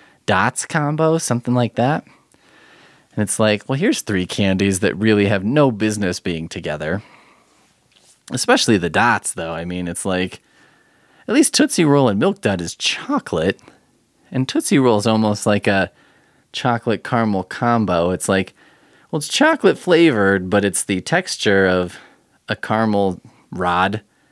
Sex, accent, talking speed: male, American, 145 wpm